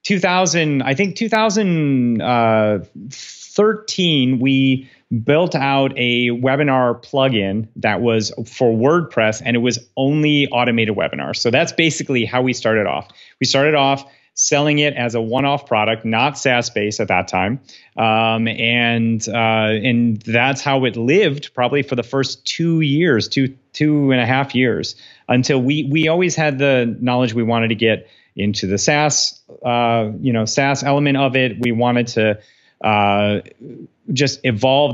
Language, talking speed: English, 155 wpm